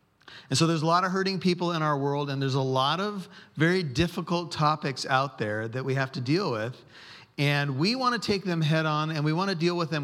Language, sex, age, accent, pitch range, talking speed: English, male, 40-59, American, 130-165 Hz, 250 wpm